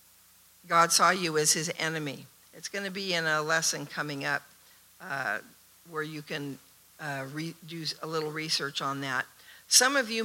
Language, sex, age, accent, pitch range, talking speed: English, female, 60-79, American, 150-195 Hz, 170 wpm